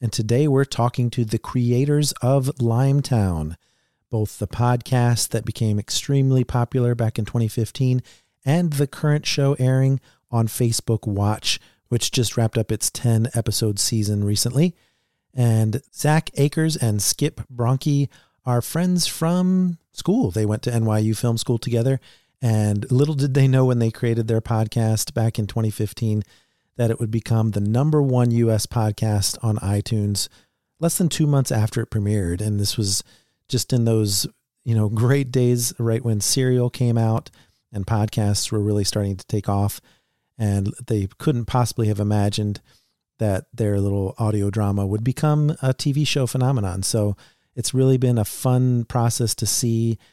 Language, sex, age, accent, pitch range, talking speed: English, male, 40-59, American, 105-130 Hz, 160 wpm